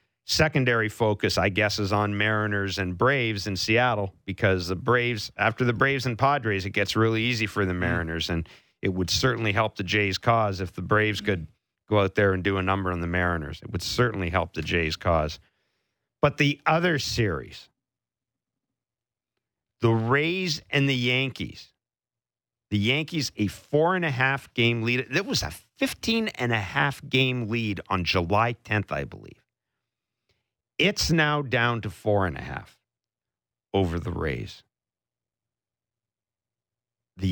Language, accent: English, American